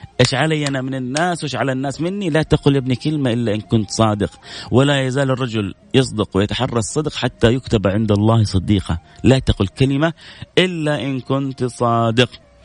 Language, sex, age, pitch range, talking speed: Arabic, male, 30-49, 120-170 Hz, 165 wpm